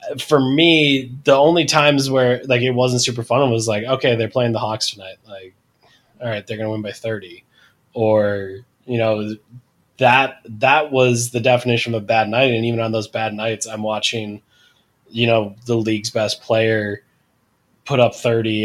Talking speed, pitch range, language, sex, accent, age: 185 wpm, 110-130 Hz, English, male, American, 20-39